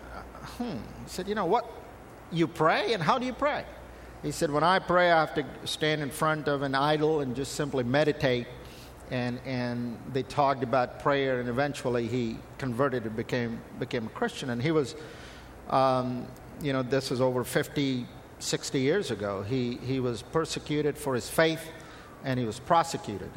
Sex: male